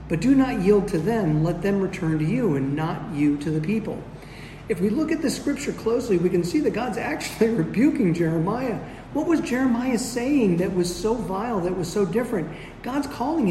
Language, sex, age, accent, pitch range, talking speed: English, male, 40-59, American, 165-225 Hz, 205 wpm